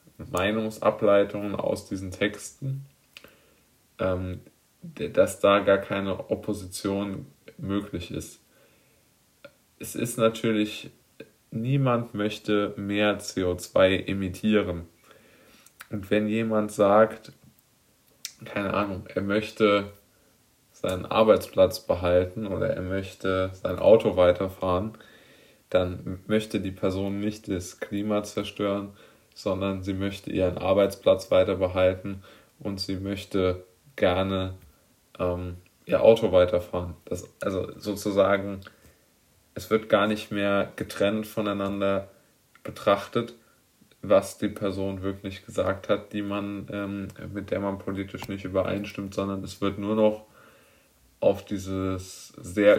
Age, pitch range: 20-39, 95-105 Hz